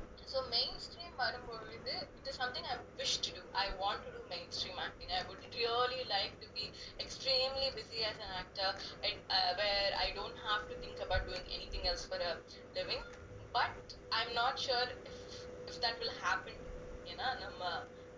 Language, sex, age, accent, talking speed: Tamil, female, 20-39, native, 190 wpm